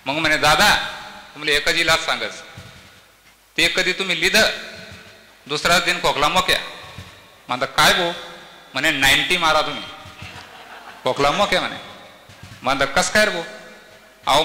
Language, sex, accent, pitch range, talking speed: Marathi, male, native, 130-190 Hz, 95 wpm